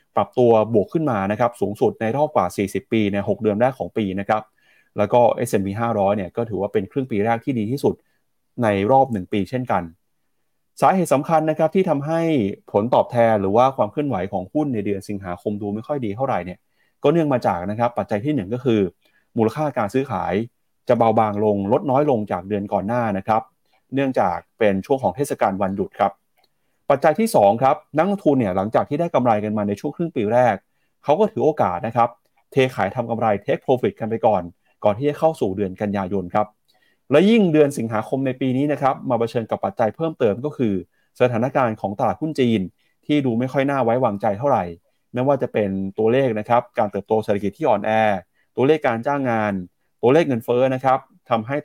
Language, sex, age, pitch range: Thai, male, 30-49, 105-140 Hz